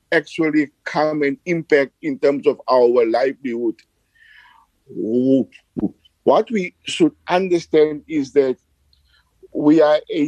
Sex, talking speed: male, 105 wpm